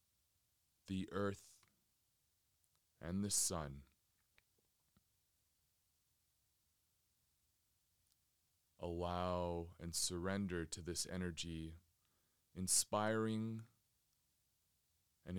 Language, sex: English, male